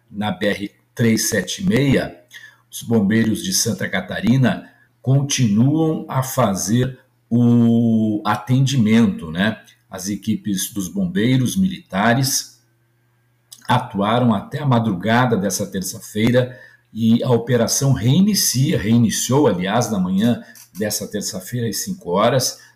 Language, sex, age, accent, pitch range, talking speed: Portuguese, male, 50-69, Brazilian, 105-130 Hz, 100 wpm